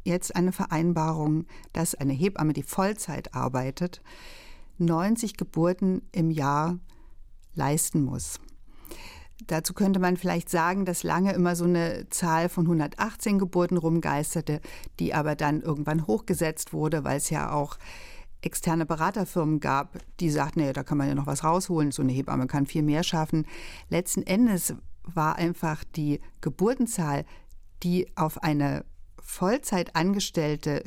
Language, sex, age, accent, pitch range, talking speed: German, female, 60-79, German, 150-180 Hz, 135 wpm